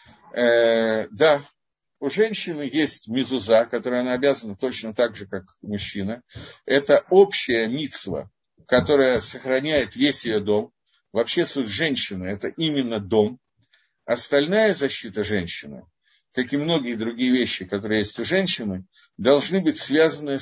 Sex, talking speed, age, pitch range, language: male, 130 wpm, 50-69, 110-145 Hz, Russian